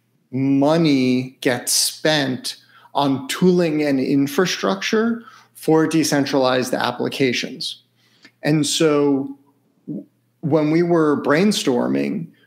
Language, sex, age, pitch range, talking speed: English, male, 40-59, 135-170 Hz, 75 wpm